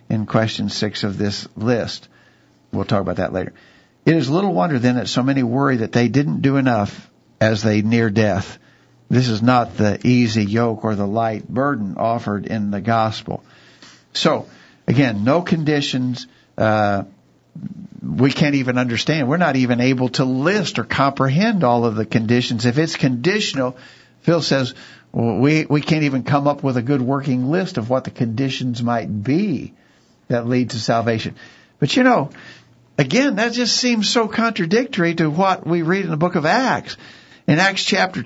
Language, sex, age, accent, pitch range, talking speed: English, male, 60-79, American, 120-180 Hz, 175 wpm